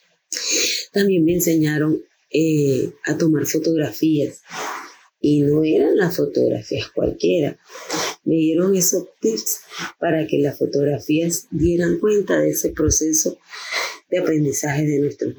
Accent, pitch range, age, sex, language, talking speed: American, 150-175 Hz, 30-49, female, English, 115 wpm